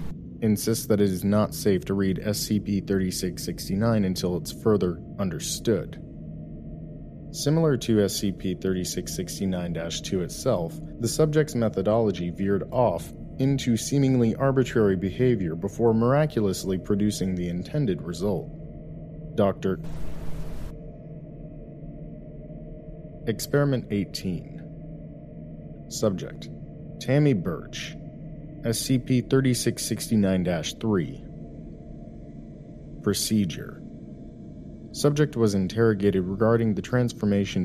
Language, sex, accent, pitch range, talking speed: English, male, American, 95-130 Hz, 75 wpm